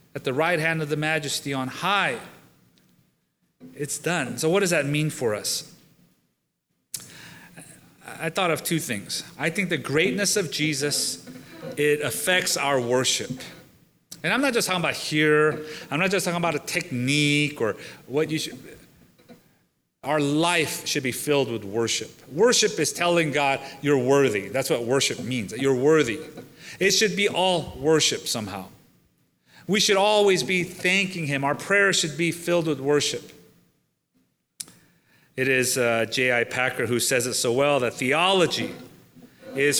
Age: 30-49